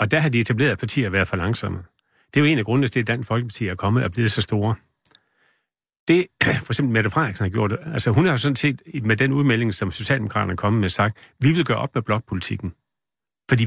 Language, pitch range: Danish, 110-145 Hz